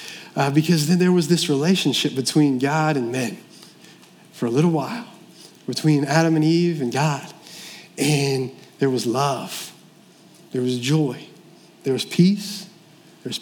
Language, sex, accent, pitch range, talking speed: English, male, American, 145-180 Hz, 145 wpm